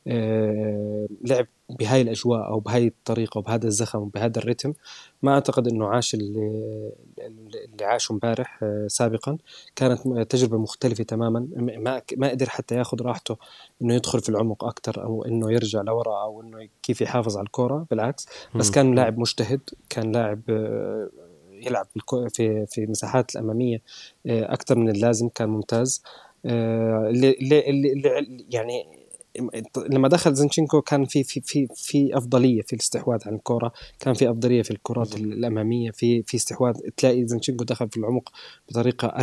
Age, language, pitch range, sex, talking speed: 20-39, Arabic, 115-130 Hz, male, 140 wpm